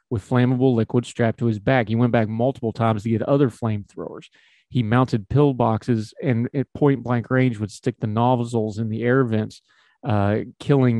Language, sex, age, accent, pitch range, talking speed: English, male, 40-59, American, 110-130 Hz, 180 wpm